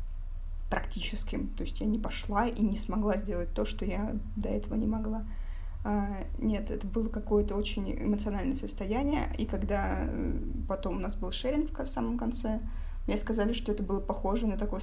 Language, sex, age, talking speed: Russian, female, 20-39, 170 wpm